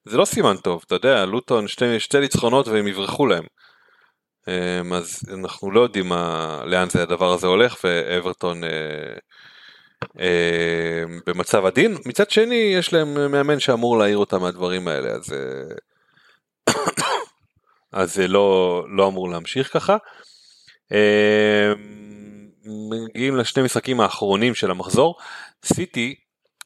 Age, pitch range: 30-49, 95-125 Hz